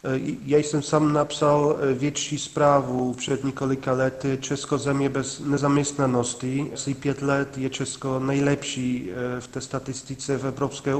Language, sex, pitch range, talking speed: Czech, male, 135-145 Hz, 125 wpm